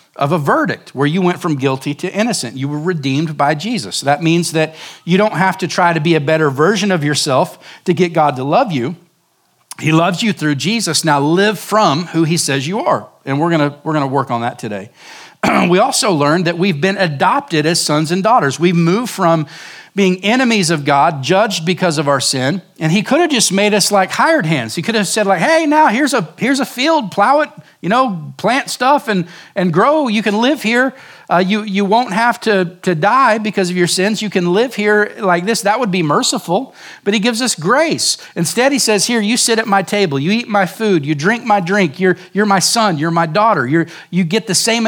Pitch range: 165-215 Hz